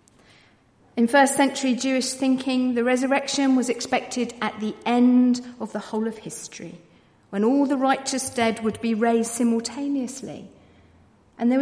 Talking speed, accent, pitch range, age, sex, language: 145 wpm, British, 195-255 Hz, 50-69, female, English